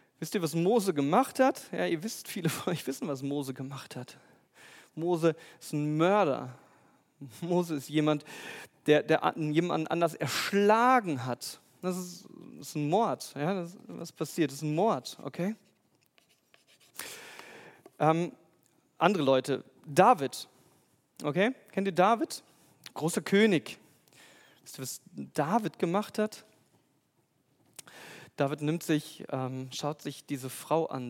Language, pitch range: German, 135-185 Hz